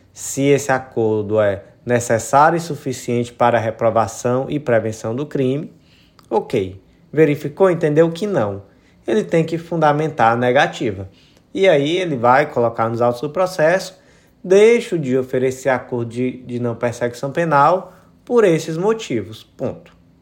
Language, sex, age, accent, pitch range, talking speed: Portuguese, male, 20-39, Brazilian, 120-165 Hz, 140 wpm